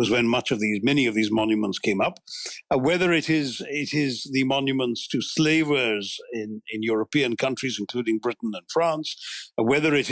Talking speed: 190 wpm